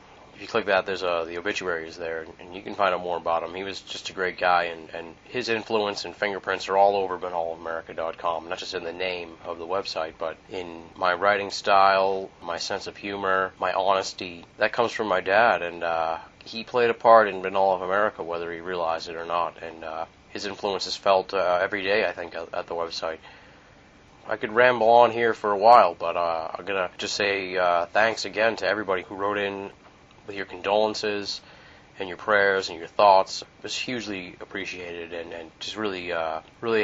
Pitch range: 85-100 Hz